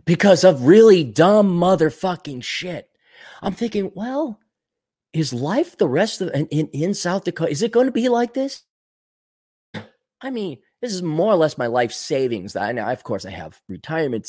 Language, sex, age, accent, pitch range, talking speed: English, male, 30-49, American, 155-230 Hz, 180 wpm